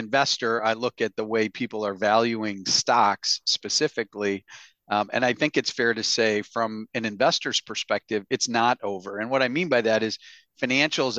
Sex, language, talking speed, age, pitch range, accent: male, English, 180 wpm, 40-59, 105-125 Hz, American